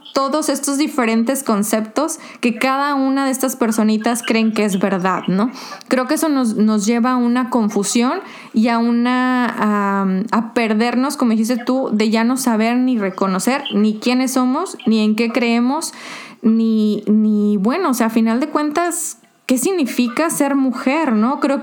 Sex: female